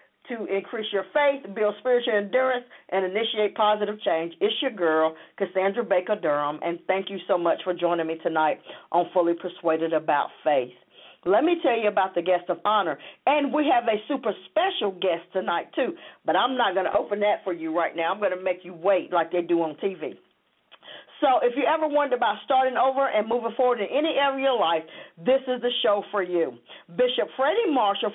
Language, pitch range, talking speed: English, 185-265 Hz, 205 wpm